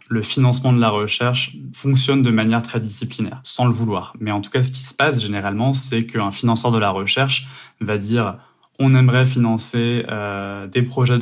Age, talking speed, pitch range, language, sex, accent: 20-39, 200 wpm, 110-125 Hz, French, male, French